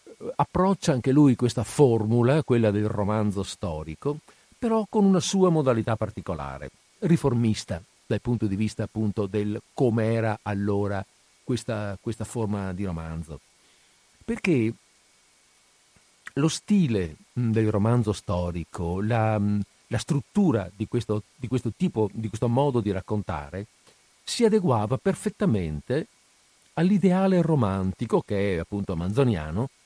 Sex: male